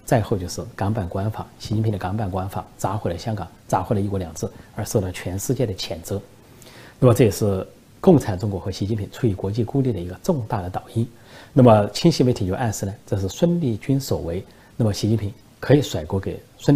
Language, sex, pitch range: Chinese, male, 100-125 Hz